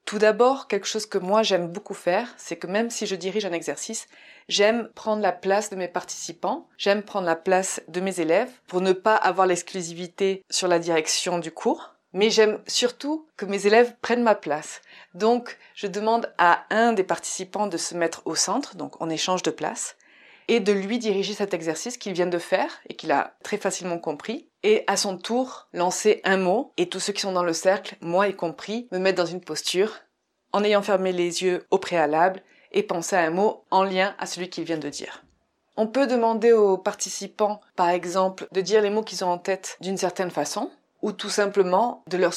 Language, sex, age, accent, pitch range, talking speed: French, female, 20-39, French, 180-215 Hz, 210 wpm